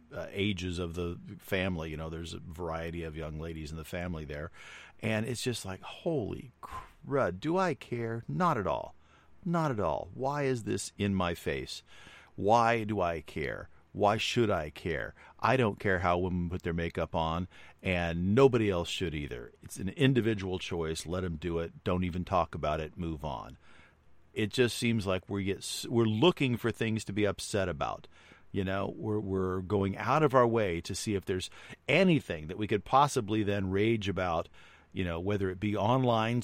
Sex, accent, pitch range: male, American, 85-115 Hz